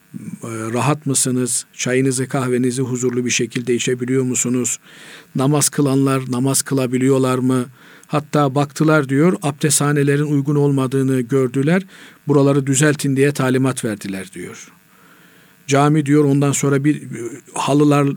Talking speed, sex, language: 110 wpm, male, Turkish